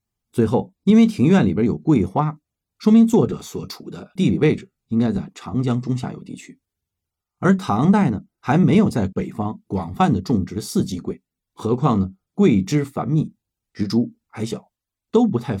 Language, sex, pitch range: Chinese, male, 100-170 Hz